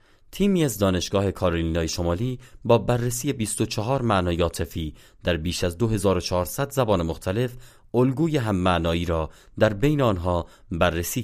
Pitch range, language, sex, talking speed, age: 85-115 Hz, Persian, male, 125 wpm, 30-49